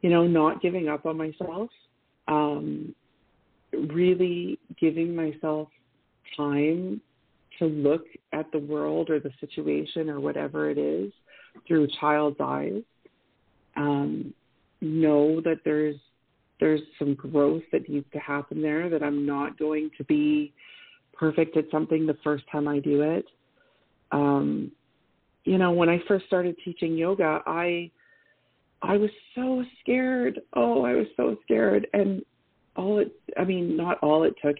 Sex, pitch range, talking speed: female, 145-175 Hz, 145 wpm